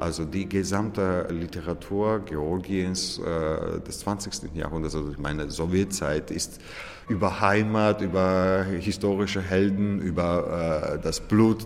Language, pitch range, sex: German, 80-100 Hz, male